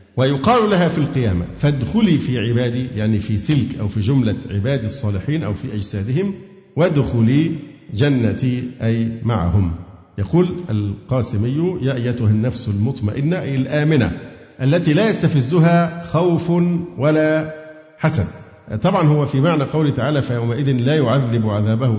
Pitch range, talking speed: 115-160 Hz, 125 wpm